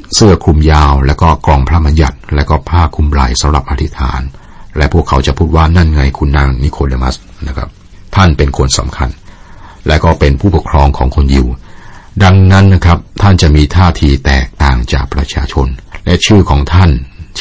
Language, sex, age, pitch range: Thai, male, 60-79, 70-90 Hz